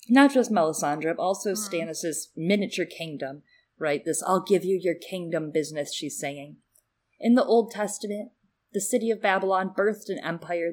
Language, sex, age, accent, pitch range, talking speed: English, female, 30-49, American, 155-215 Hz, 160 wpm